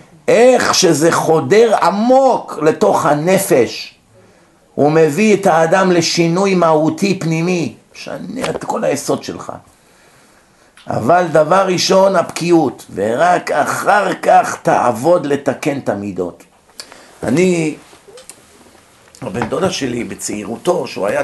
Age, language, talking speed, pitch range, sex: 50-69, Hebrew, 100 wpm, 140-180 Hz, male